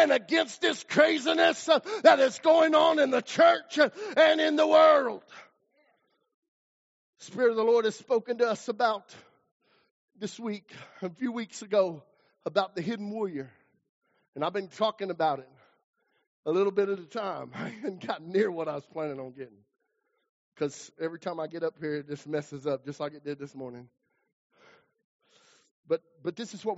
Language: English